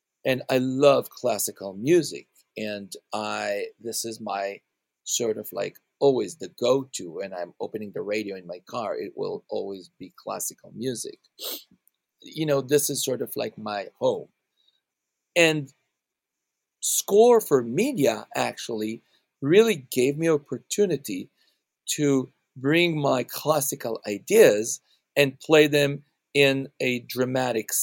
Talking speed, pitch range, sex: 125 wpm, 115-155 Hz, male